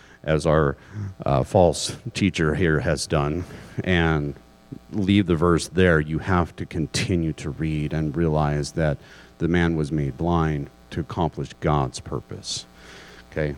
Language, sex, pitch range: English, male, 75-100 Hz